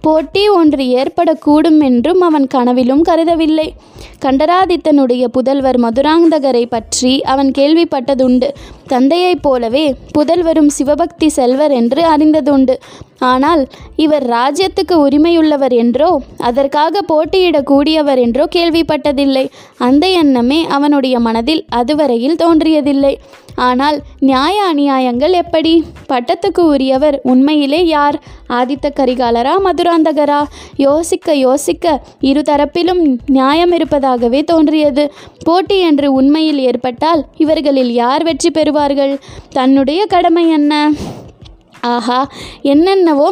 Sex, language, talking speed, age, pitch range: female, Tamil, 90 wpm, 20-39, 270-325 Hz